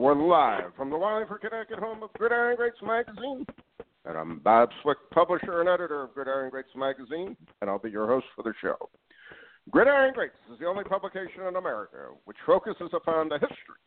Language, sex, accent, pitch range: English, male, American, 135-220 Hz